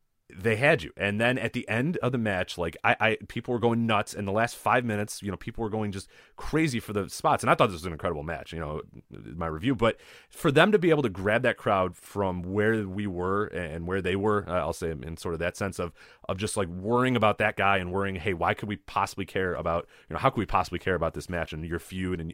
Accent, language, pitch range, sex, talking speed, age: American, English, 95-120 Hz, male, 275 wpm, 30-49